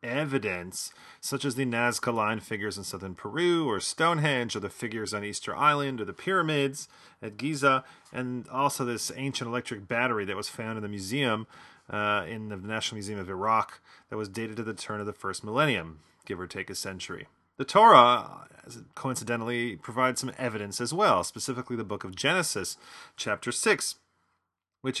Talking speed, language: 175 wpm, English